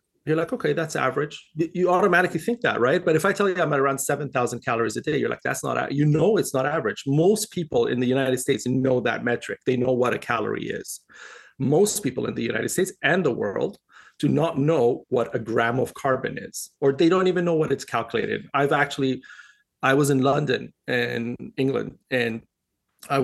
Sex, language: male, English